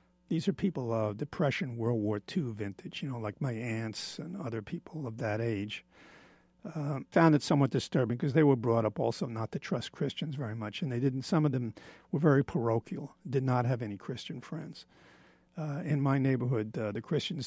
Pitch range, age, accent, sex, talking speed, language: 115-155 Hz, 50-69, American, male, 205 wpm, English